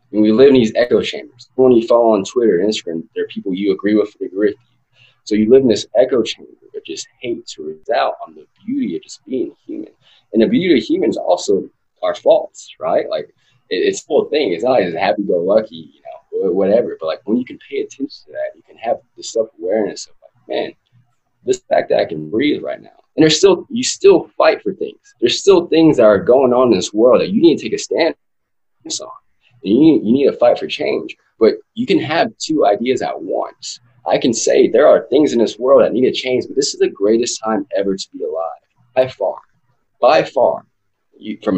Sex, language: male, English